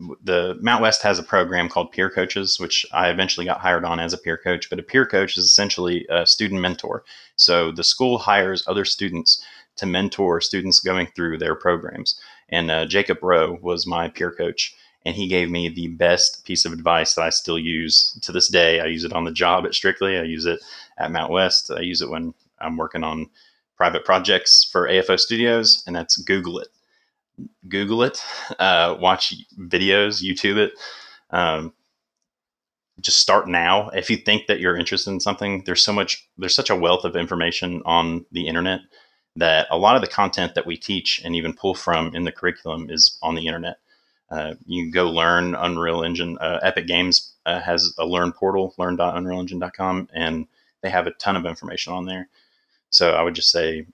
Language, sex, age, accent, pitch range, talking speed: English, male, 30-49, American, 85-95 Hz, 195 wpm